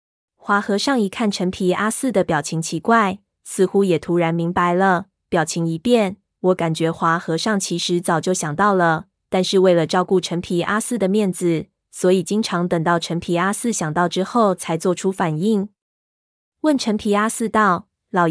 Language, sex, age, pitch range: Chinese, female, 20-39, 175-215 Hz